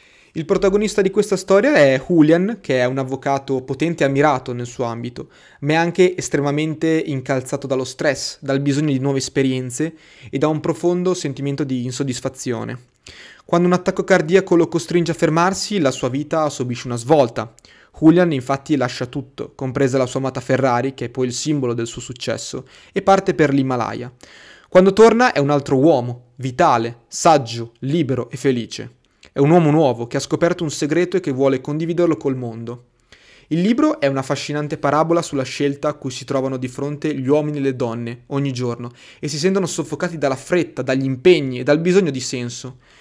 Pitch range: 130-165 Hz